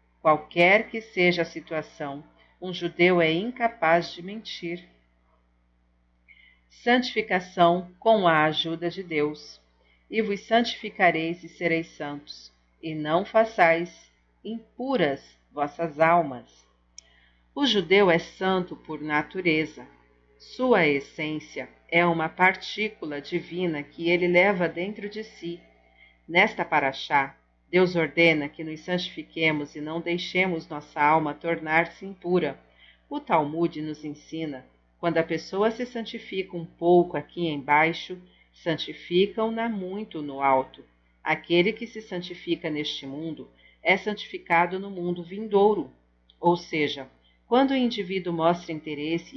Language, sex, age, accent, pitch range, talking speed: Portuguese, female, 50-69, Brazilian, 145-185 Hz, 115 wpm